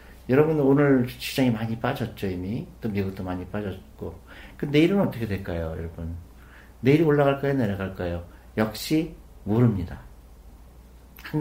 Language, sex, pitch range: Korean, male, 90-130 Hz